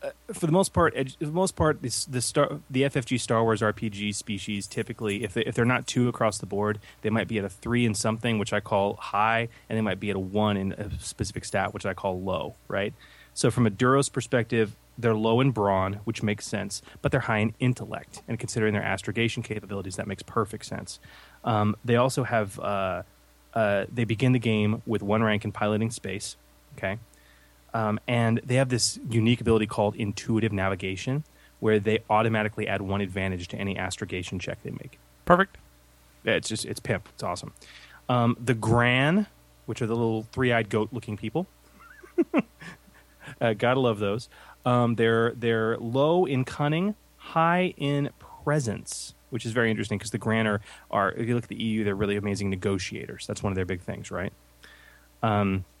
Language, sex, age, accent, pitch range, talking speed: English, male, 20-39, American, 100-120 Hz, 195 wpm